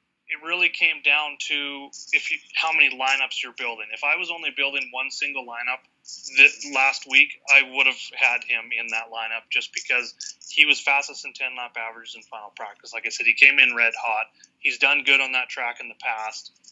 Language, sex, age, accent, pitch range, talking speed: English, male, 20-39, American, 115-140 Hz, 210 wpm